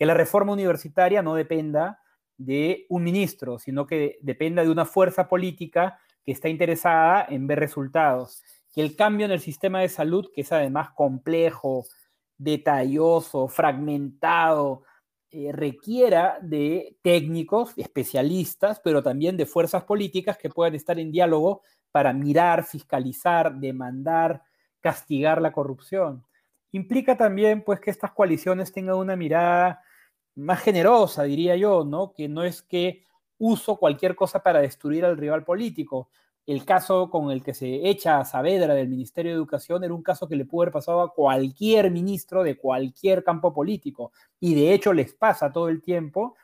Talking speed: 155 wpm